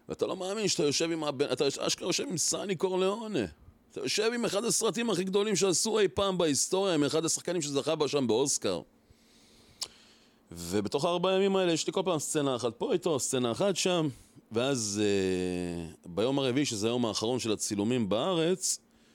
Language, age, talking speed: Hebrew, 30-49, 175 wpm